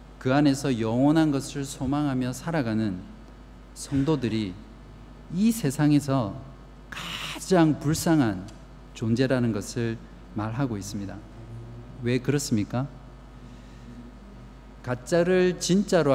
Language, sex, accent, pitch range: Korean, male, native, 115-145 Hz